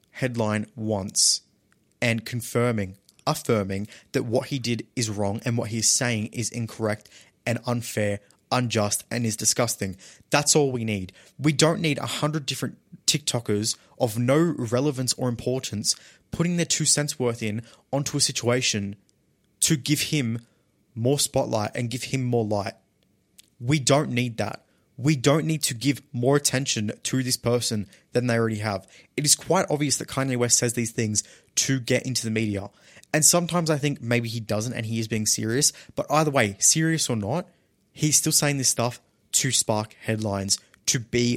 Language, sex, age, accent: English, male, 20-39, Australian